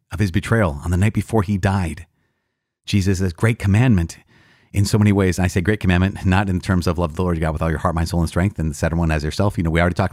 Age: 30-49